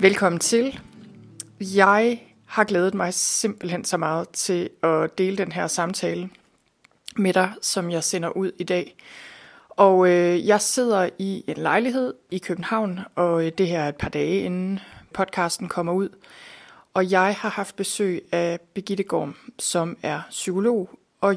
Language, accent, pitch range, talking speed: Danish, native, 170-200 Hz, 150 wpm